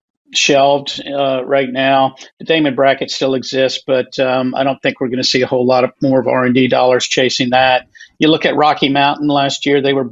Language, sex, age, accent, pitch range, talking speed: English, male, 50-69, American, 130-140 Hz, 225 wpm